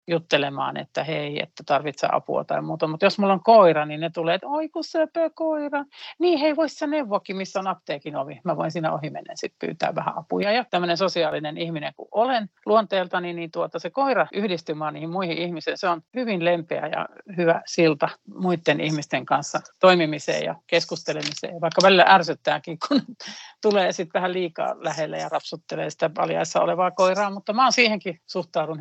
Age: 50-69